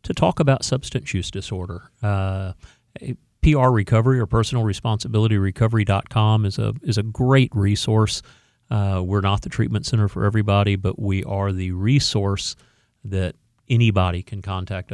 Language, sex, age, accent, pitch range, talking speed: English, male, 40-59, American, 100-125 Hz, 145 wpm